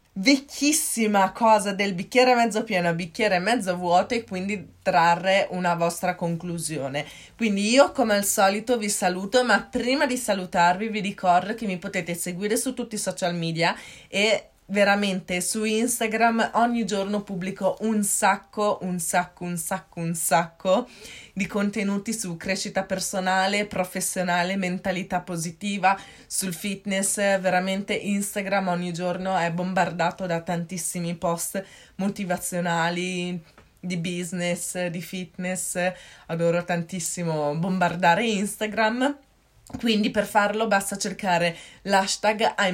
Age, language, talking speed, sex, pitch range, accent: 20-39, Italian, 120 wpm, female, 180-225 Hz, native